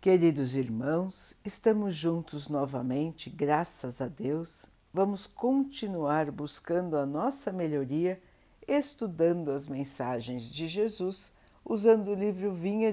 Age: 60-79